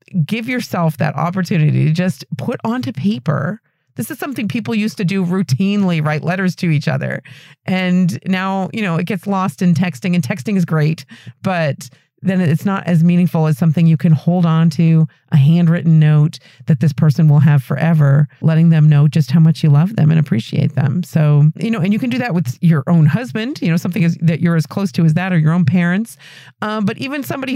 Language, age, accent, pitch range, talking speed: English, 40-59, American, 150-185 Hz, 215 wpm